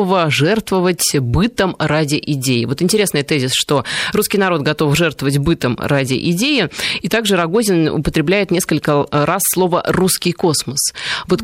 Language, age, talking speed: Russian, 20-39, 130 wpm